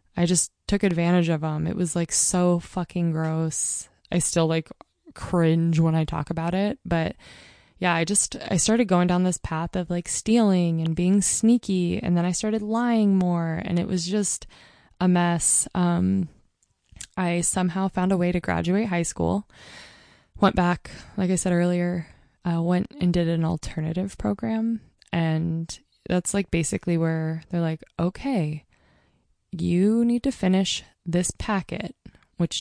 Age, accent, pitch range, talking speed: 20-39, American, 160-190 Hz, 160 wpm